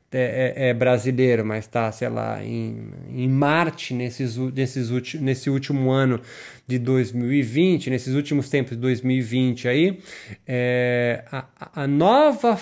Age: 20-39